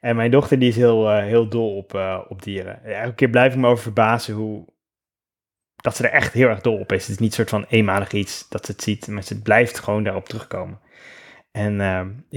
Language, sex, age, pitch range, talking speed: Dutch, male, 20-39, 100-120 Hz, 245 wpm